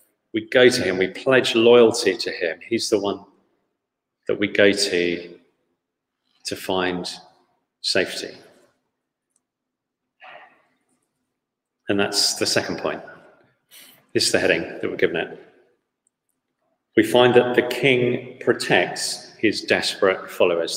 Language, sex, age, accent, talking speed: English, male, 40-59, British, 120 wpm